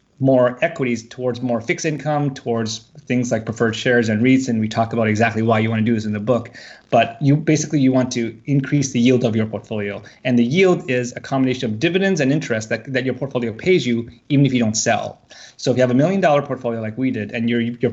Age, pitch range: 30-49, 115-140 Hz